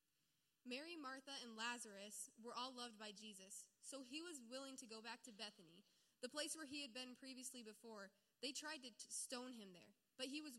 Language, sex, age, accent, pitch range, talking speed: English, female, 10-29, American, 215-265 Hz, 200 wpm